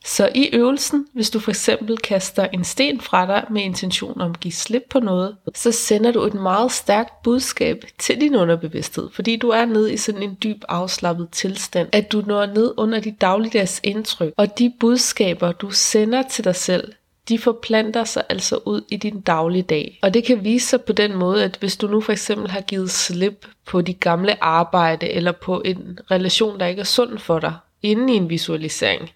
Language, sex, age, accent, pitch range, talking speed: Danish, female, 30-49, native, 185-225 Hz, 205 wpm